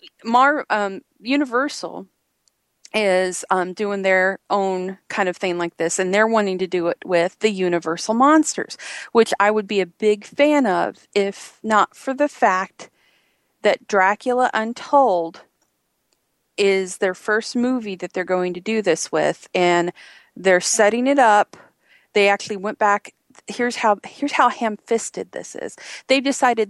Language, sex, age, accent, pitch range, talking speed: English, female, 40-59, American, 185-230 Hz, 155 wpm